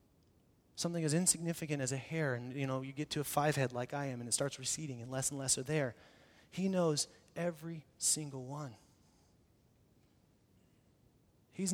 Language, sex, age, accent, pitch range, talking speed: English, male, 30-49, American, 145-205 Hz, 175 wpm